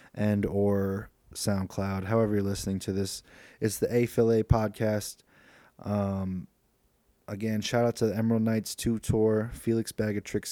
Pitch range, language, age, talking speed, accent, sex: 95-105 Hz, English, 20-39, 135 wpm, American, male